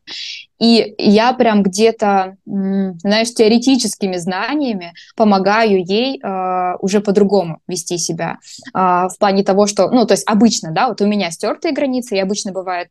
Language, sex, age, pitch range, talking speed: Russian, female, 20-39, 180-220 Hz, 140 wpm